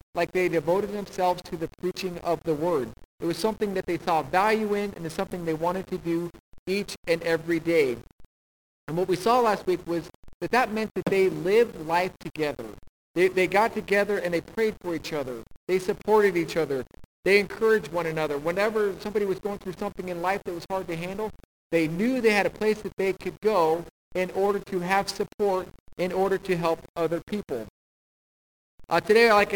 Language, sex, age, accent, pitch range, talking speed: English, male, 50-69, American, 165-195 Hz, 200 wpm